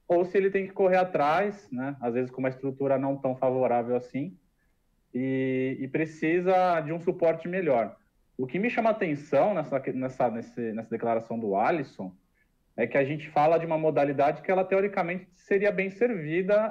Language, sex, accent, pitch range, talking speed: Portuguese, male, Brazilian, 125-185 Hz, 185 wpm